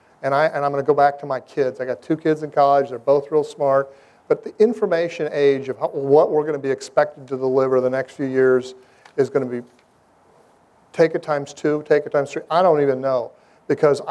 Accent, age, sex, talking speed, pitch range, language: American, 40-59, male, 240 wpm, 130-155 Hz, English